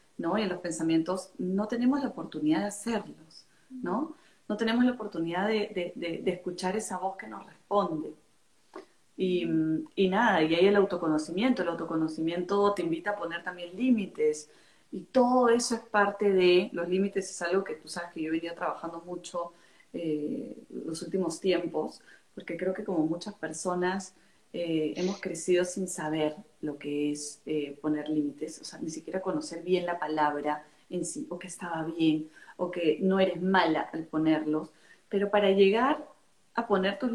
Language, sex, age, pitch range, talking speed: Spanish, female, 30-49, 165-230 Hz, 175 wpm